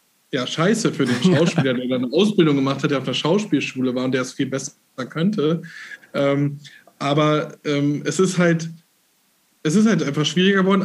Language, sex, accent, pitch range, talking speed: German, male, German, 145-170 Hz, 185 wpm